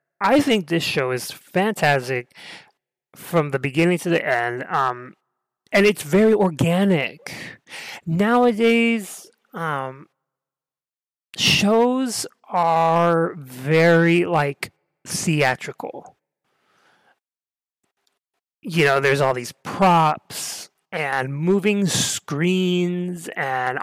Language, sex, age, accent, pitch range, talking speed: English, male, 30-49, American, 135-180 Hz, 85 wpm